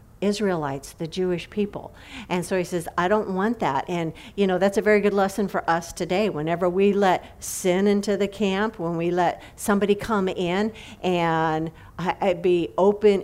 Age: 50-69